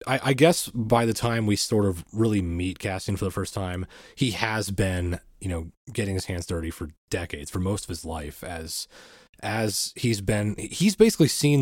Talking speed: 200 wpm